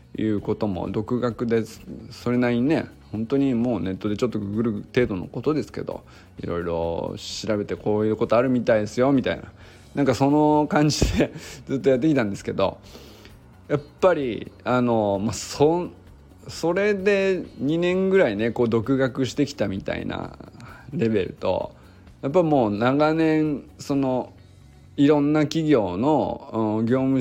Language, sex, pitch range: Japanese, male, 105-140 Hz